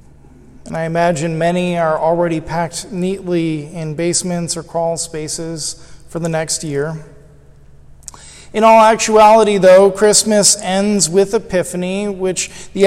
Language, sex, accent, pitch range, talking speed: English, male, American, 165-205 Hz, 125 wpm